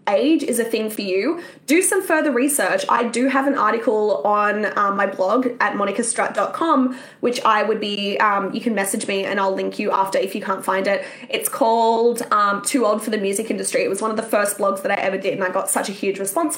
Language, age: English, 10-29